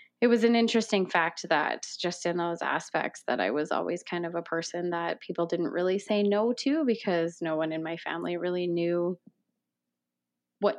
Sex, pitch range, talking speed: female, 165-205 Hz, 190 wpm